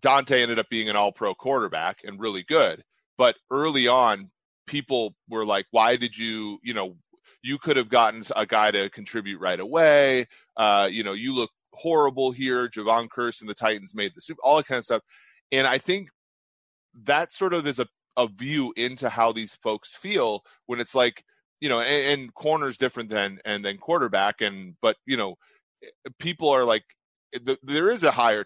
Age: 30-49